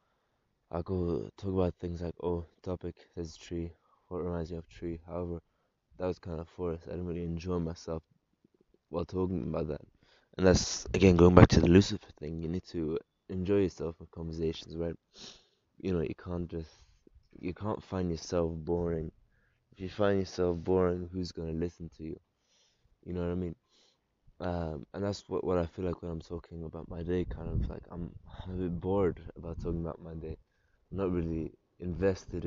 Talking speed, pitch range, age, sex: 190 wpm, 85-95 Hz, 20-39, male